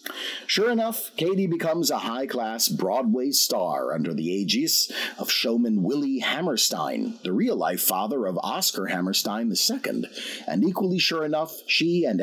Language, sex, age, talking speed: English, male, 50-69, 150 wpm